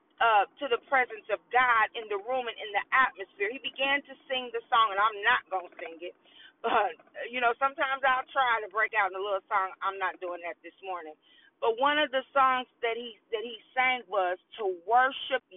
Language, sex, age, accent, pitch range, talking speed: English, female, 40-59, American, 240-335 Hz, 225 wpm